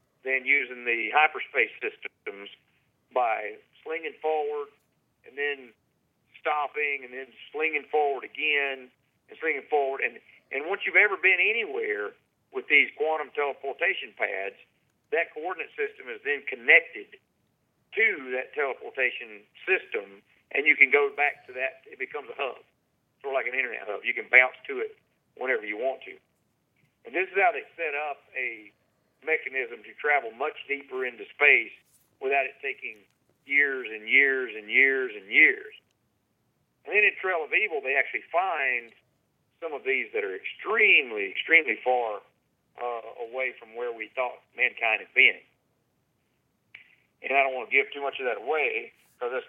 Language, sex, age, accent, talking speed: English, male, 50-69, American, 160 wpm